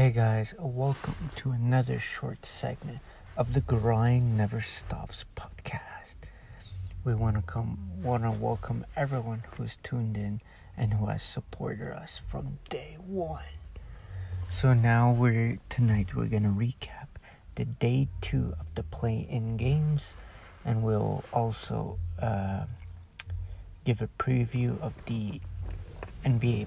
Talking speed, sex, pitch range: 120 wpm, male, 90-120 Hz